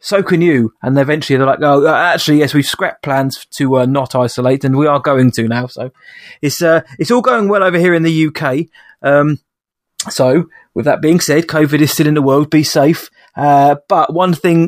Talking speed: 215 wpm